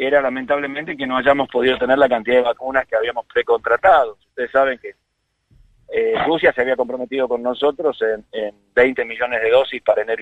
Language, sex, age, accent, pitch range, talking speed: Spanish, male, 40-59, Argentinian, 125-175 Hz, 190 wpm